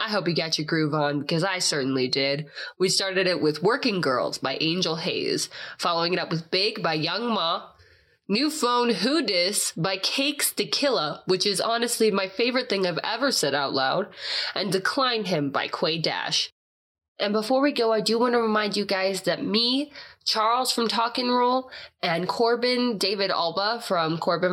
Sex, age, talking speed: female, 20-39, 185 wpm